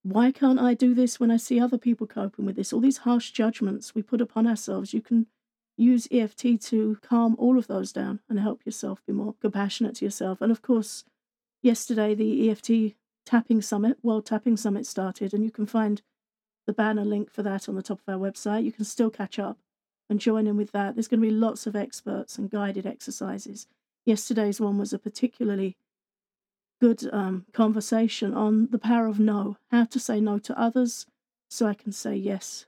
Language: English